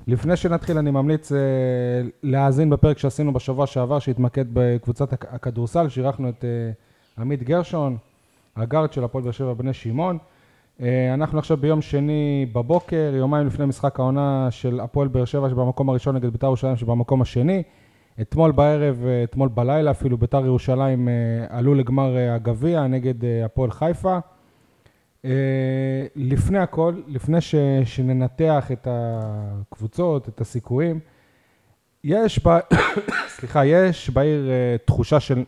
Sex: male